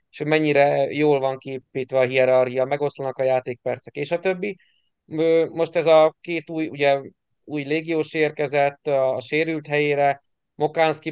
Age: 30-49